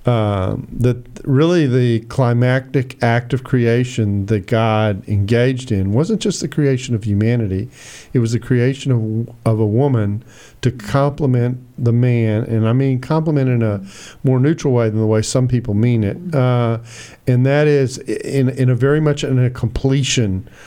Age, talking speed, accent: 50-69, 170 wpm, American